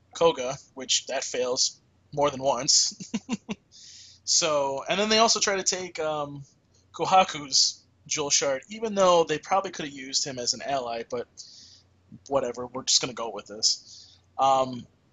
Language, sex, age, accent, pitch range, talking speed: English, male, 20-39, American, 125-160 Hz, 160 wpm